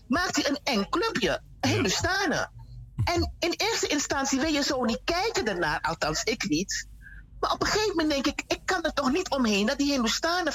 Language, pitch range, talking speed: Dutch, 205-305 Hz, 200 wpm